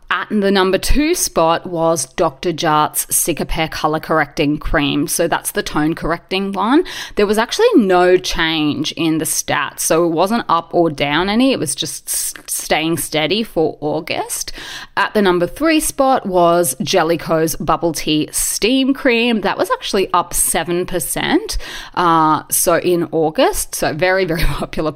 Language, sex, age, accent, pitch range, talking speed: English, female, 20-39, Australian, 160-210 Hz, 155 wpm